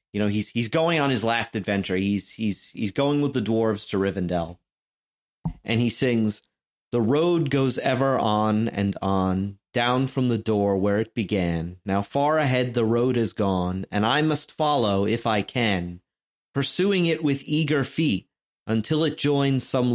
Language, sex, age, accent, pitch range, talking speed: English, male, 30-49, American, 105-140 Hz, 175 wpm